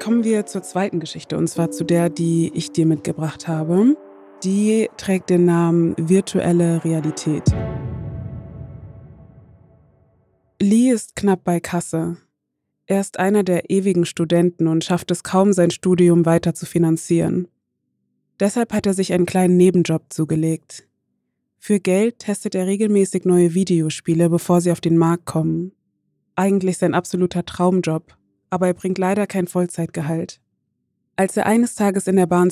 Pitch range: 165-190 Hz